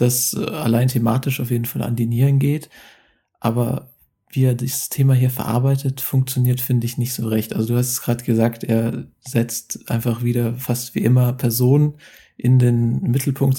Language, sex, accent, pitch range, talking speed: German, male, German, 120-130 Hz, 175 wpm